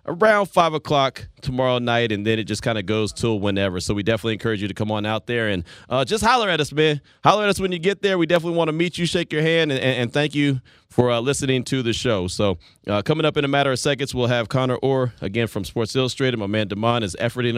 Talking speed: 270 wpm